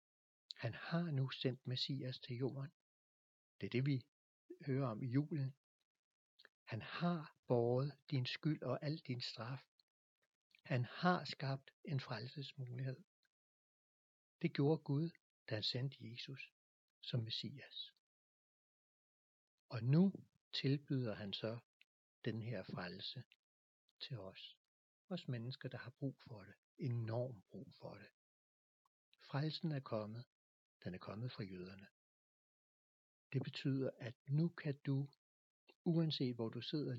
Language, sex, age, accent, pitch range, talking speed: English, male, 60-79, Danish, 115-145 Hz, 125 wpm